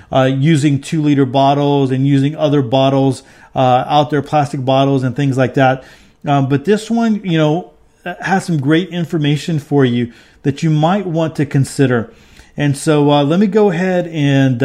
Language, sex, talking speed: English, male, 180 wpm